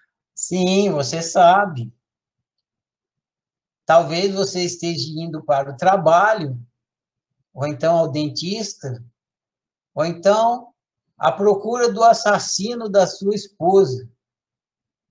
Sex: male